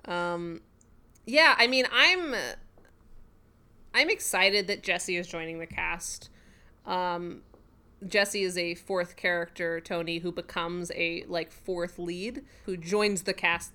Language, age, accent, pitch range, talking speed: English, 20-39, American, 180-210 Hz, 130 wpm